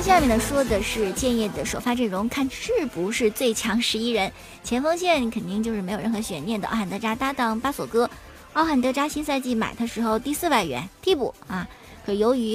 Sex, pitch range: male, 210-265 Hz